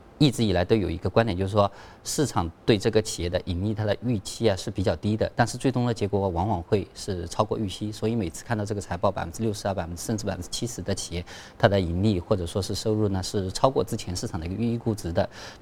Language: Chinese